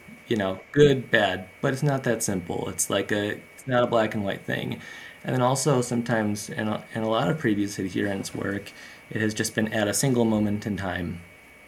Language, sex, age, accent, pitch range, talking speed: English, male, 30-49, American, 100-120 Hz, 215 wpm